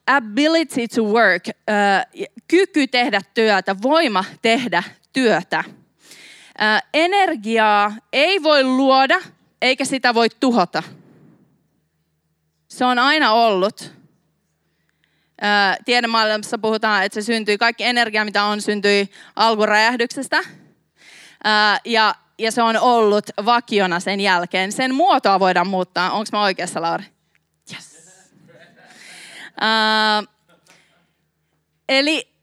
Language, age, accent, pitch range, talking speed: Finnish, 20-39, native, 190-245 Hz, 100 wpm